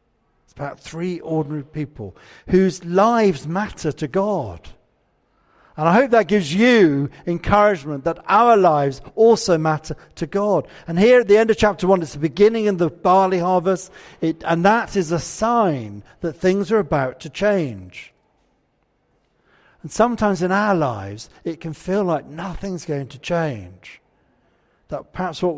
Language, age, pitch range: English, 50-69, 150-195 Hz